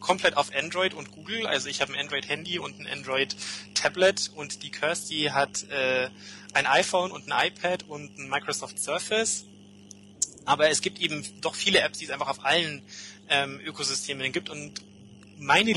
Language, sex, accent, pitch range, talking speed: English, male, German, 100-160 Hz, 165 wpm